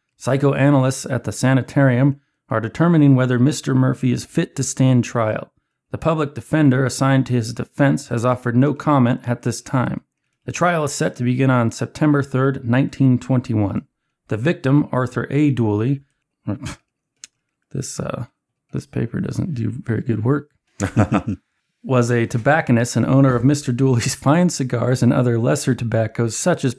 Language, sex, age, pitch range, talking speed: English, male, 40-59, 120-140 Hz, 155 wpm